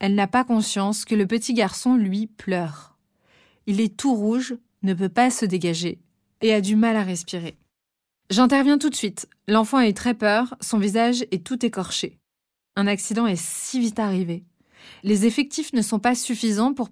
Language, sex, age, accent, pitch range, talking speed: French, female, 30-49, French, 190-240 Hz, 185 wpm